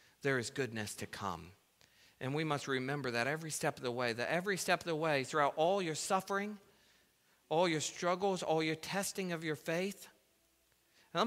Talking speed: 185 wpm